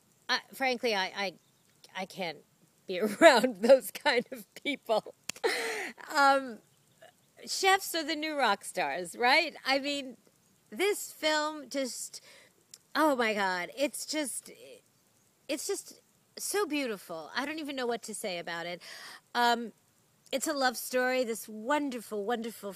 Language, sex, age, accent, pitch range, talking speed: English, female, 40-59, American, 205-280 Hz, 130 wpm